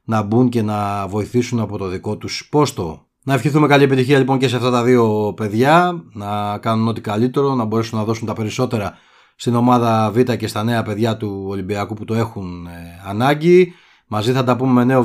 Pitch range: 105-130 Hz